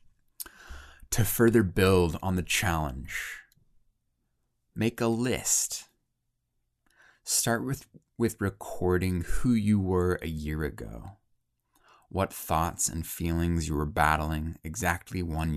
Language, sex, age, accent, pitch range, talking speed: English, male, 20-39, American, 85-110 Hz, 110 wpm